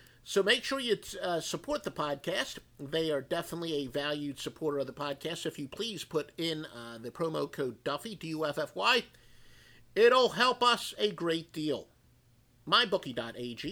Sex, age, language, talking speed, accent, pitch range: male, 50-69, English, 155 wpm, American, 140-200 Hz